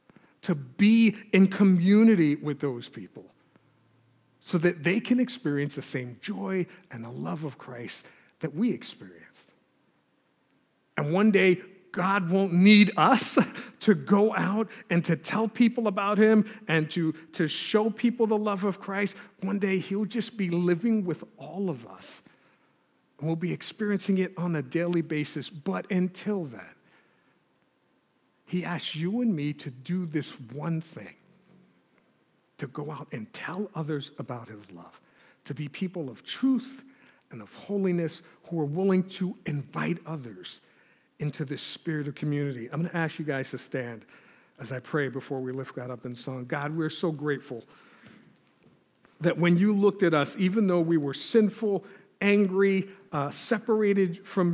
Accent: American